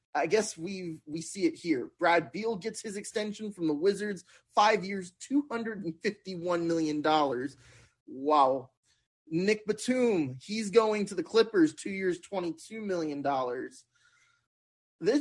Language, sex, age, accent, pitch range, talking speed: English, male, 20-39, American, 150-235 Hz, 135 wpm